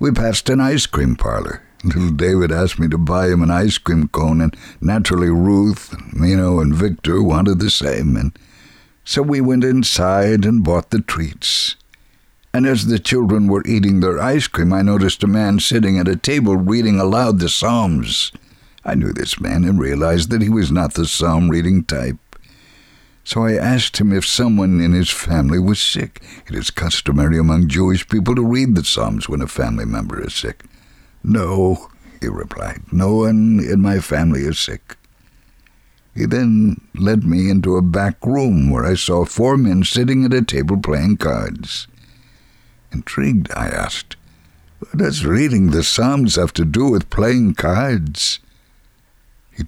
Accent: American